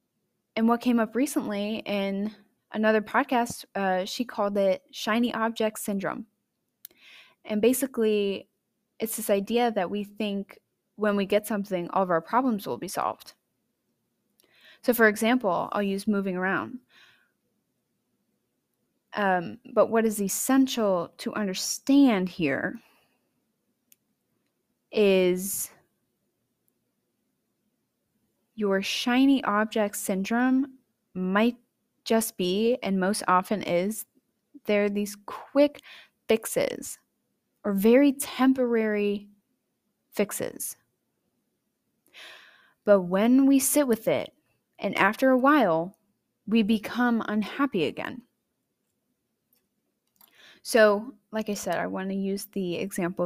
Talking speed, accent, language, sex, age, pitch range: 105 wpm, American, English, female, 20-39, 200-240 Hz